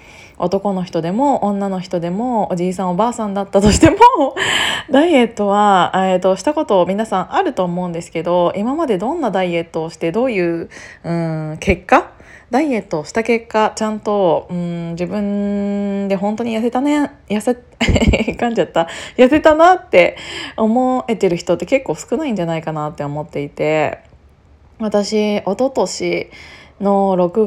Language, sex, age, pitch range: Japanese, female, 20-39, 180-230 Hz